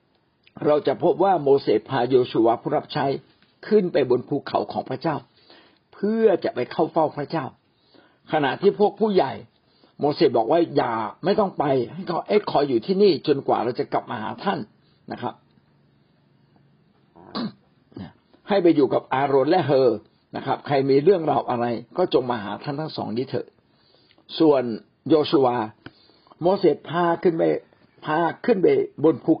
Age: 60-79